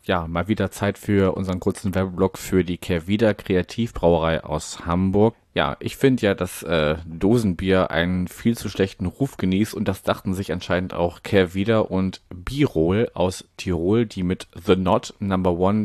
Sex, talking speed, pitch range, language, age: male, 165 wpm, 85-100 Hz, German, 30-49